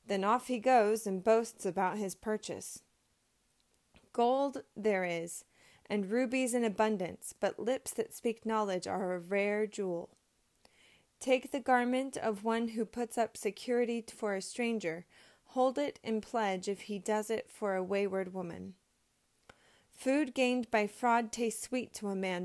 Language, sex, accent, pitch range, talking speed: English, female, American, 200-245 Hz, 155 wpm